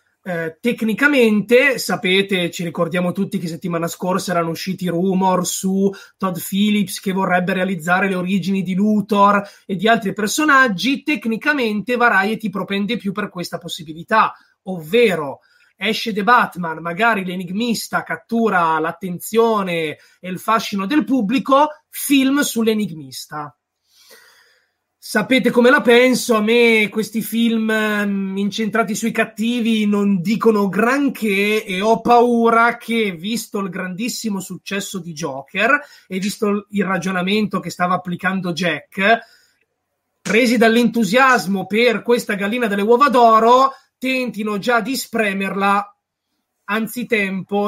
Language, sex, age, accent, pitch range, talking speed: Italian, male, 20-39, native, 185-230 Hz, 115 wpm